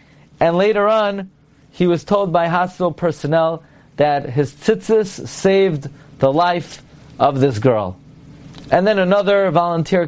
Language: English